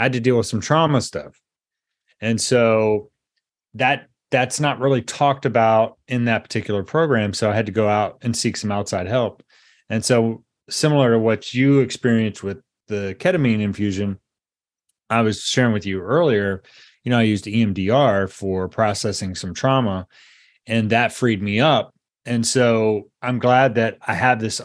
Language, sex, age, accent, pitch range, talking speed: English, male, 30-49, American, 105-130 Hz, 170 wpm